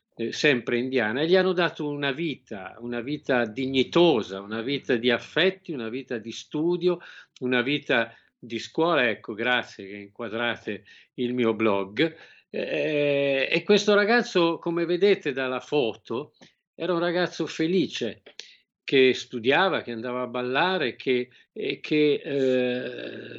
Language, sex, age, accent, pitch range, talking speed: Italian, male, 50-69, native, 125-170 Hz, 130 wpm